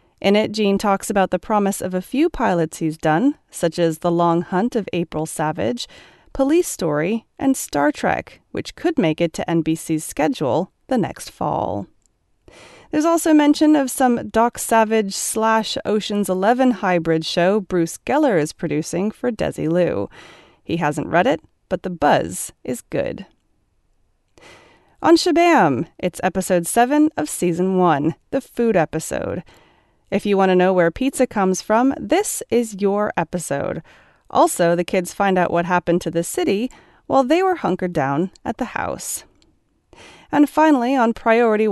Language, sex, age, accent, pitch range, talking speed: English, female, 30-49, American, 175-260 Hz, 155 wpm